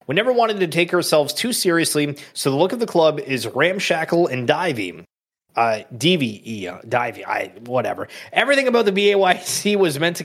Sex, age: male, 30-49